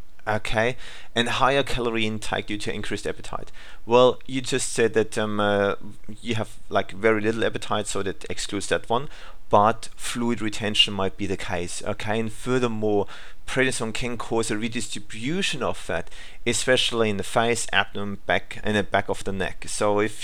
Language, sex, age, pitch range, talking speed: English, male, 40-59, 105-120 Hz, 170 wpm